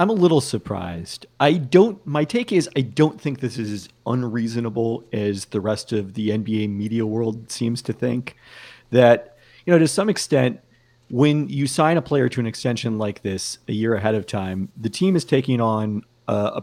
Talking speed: 200 wpm